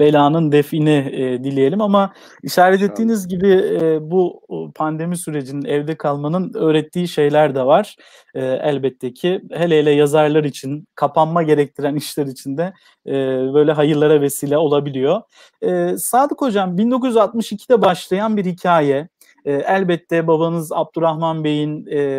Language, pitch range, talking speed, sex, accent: Turkish, 150-195 Hz, 130 wpm, male, native